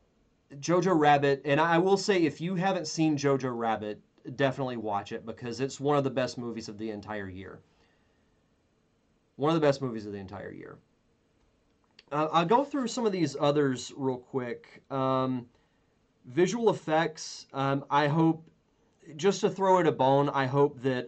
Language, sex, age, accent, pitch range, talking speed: English, male, 30-49, American, 130-160 Hz, 170 wpm